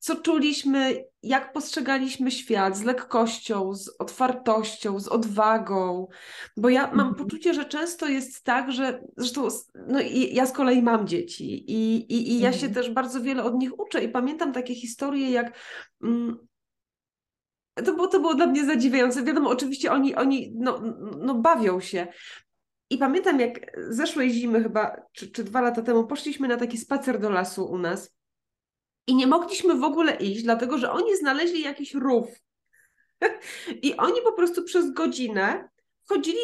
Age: 20-39